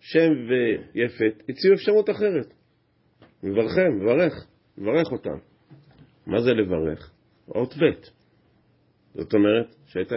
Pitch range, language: 100-145 Hz, Hebrew